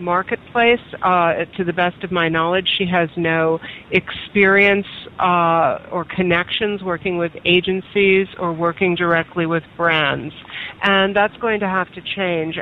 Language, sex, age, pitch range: English, female, 50-69, 170-195 Hz